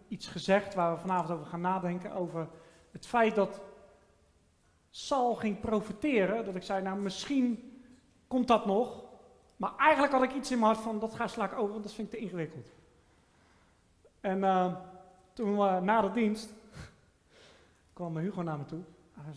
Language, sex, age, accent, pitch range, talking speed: Dutch, male, 40-59, Dutch, 165-245 Hz, 175 wpm